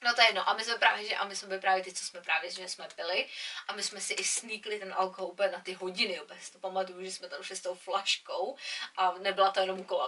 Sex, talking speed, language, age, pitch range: female, 280 wpm, Czech, 20-39, 190-250 Hz